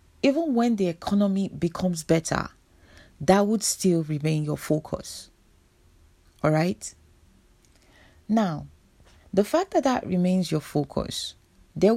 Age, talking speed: 40-59, 115 wpm